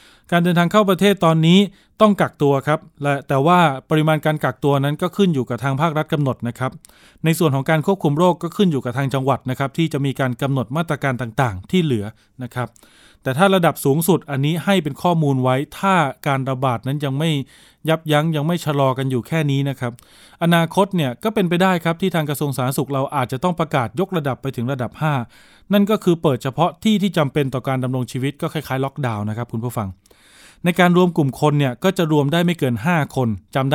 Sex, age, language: male, 20-39, Thai